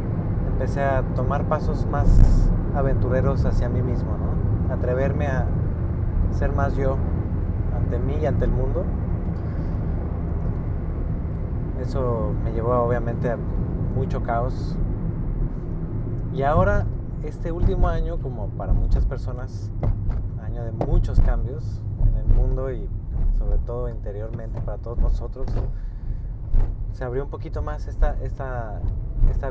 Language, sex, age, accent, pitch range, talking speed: English, male, 30-49, Mexican, 85-120 Hz, 120 wpm